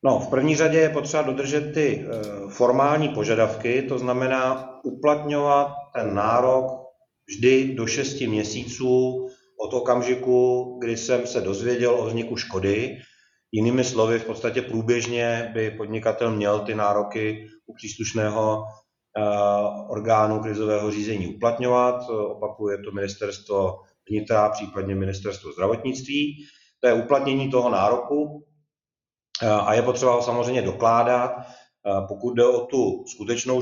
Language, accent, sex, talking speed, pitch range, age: Czech, native, male, 120 wpm, 110-125 Hz, 30-49